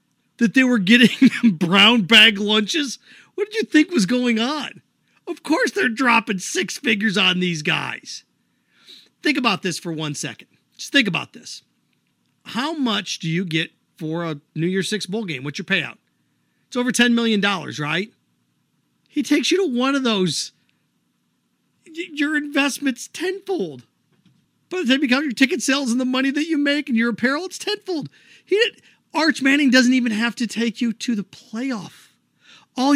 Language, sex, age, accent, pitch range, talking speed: English, male, 40-59, American, 185-270 Hz, 175 wpm